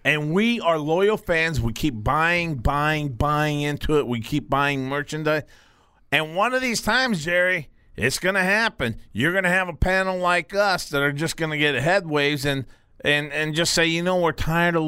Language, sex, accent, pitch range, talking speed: English, male, American, 125-175 Hz, 205 wpm